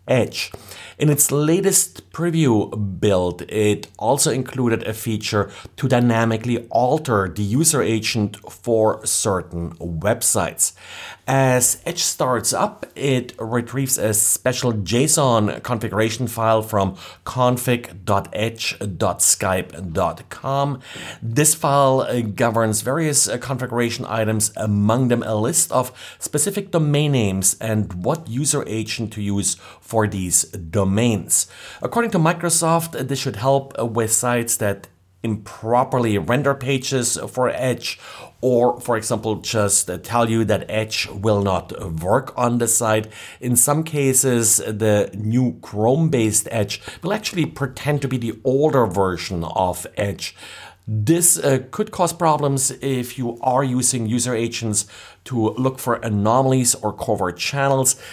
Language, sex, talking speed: English, male, 125 wpm